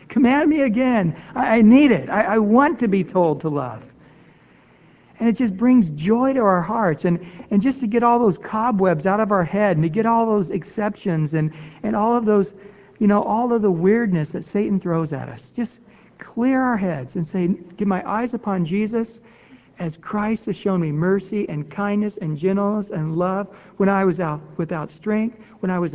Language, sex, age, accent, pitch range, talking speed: English, male, 60-79, American, 170-225 Hz, 200 wpm